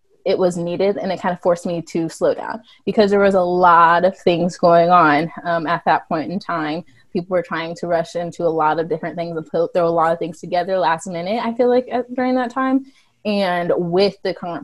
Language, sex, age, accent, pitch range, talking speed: English, female, 20-39, American, 170-200 Hz, 240 wpm